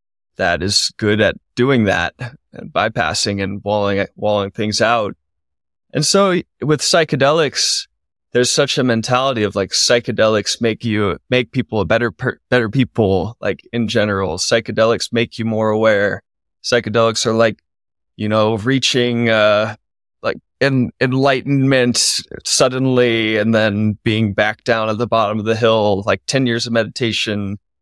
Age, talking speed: 20-39, 145 wpm